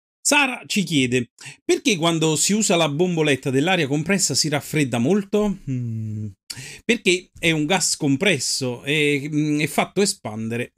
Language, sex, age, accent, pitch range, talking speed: Italian, male, 40-59, native, 120-185 Hz, 140 wpm